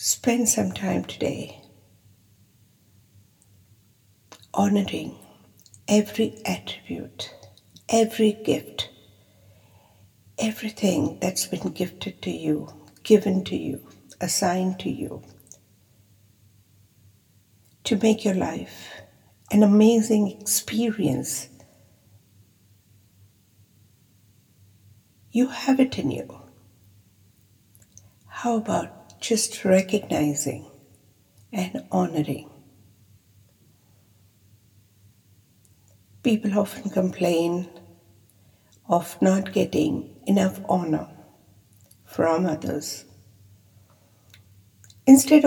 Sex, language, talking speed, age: female, English, 65 wpm, 60-79